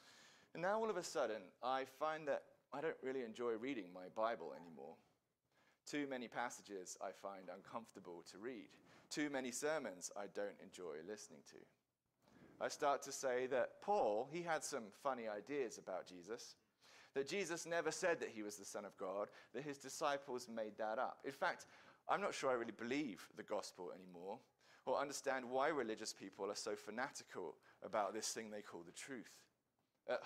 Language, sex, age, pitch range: English, male, 30-49, 110-155 Hz